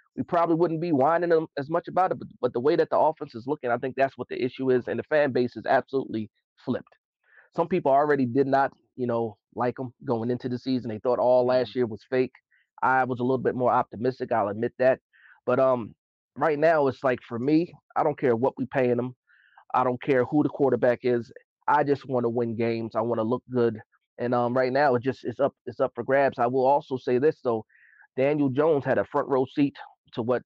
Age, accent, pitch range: 30-49, American, 115-140 Hz